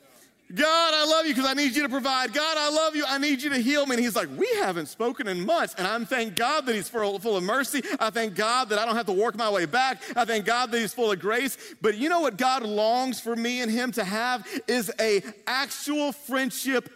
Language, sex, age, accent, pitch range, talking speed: English, male, 40-59, American, 200-270 Hz, 265 wpm